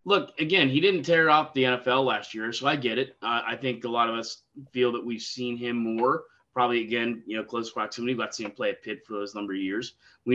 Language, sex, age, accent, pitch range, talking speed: English, male, 20-39, American, 115-135 Hz, 265 wpm